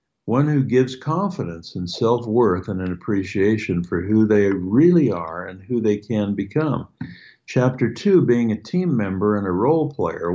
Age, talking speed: 60-79, 170 wpm